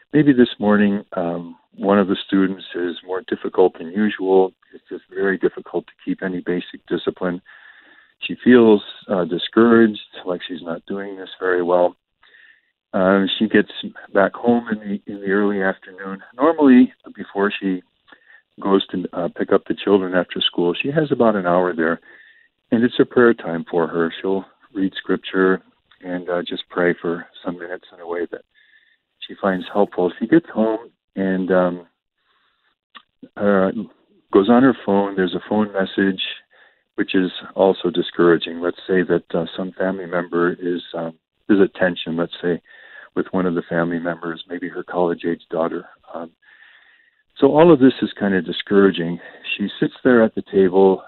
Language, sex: English, male